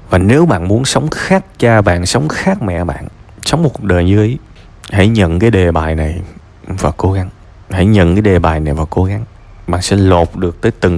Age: 20-39